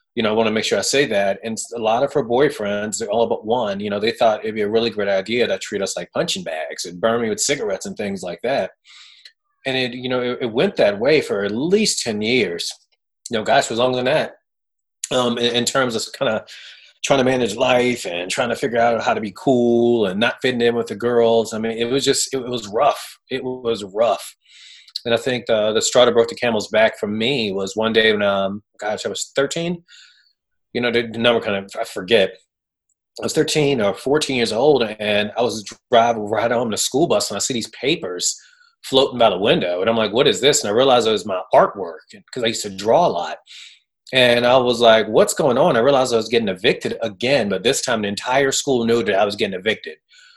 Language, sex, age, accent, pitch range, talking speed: English, male, 30-49, American, 115-140 Hz, 245 wpm